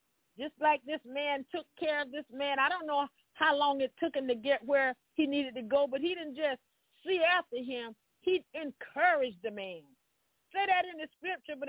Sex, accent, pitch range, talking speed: female, American, 245-330 Hz, 210 wpm